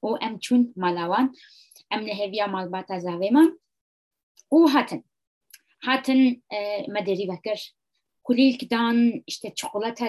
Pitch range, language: 205-270 Hz, English